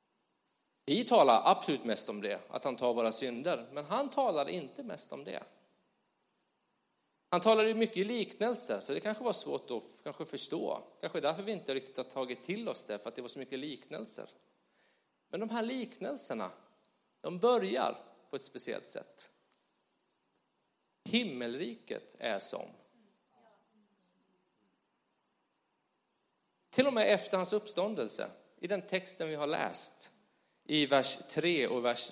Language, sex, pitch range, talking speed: Swedish, male, 125-210 Hz, 145 wpm